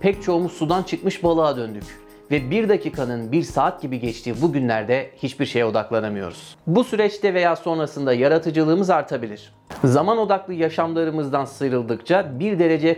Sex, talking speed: male, 140 wpm